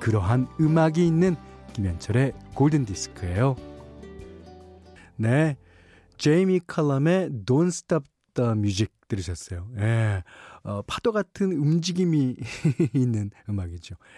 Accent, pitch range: native, 105-170 Hz